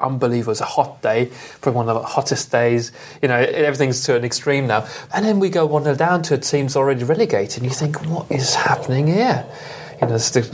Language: English